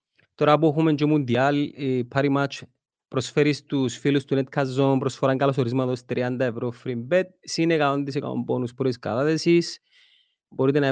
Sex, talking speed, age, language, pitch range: male, 145 wpm, 30-49, Greek, 120-150 Hz